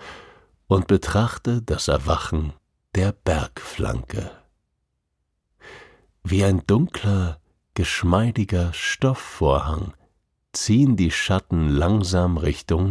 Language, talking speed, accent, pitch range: German, 75 wpm, German, 75-100 Hz